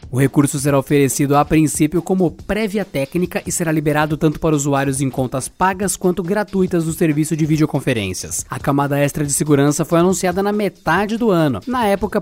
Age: 20-39